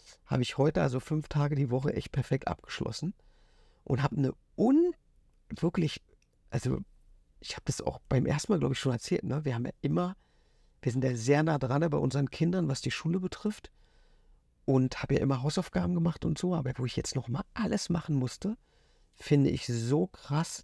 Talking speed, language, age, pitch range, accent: 185 wpm, German, 50-69, 125-155 Hz, German